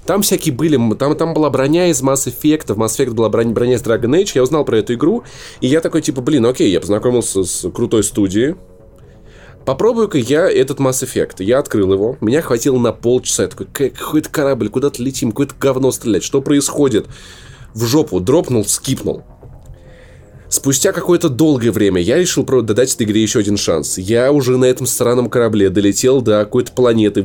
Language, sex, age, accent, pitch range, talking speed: Russian, male, 20-39, native, 115-145 Hz, 185 wpm